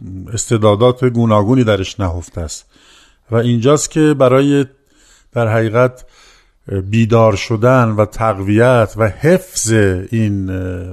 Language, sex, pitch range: Persian, male, 105-130 Hz